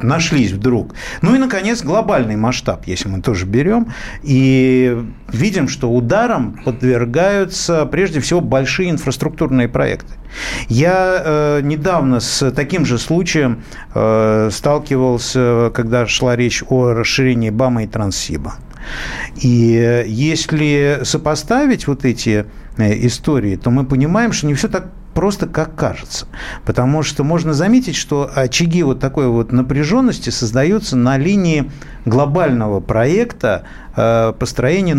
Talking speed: 125 wpm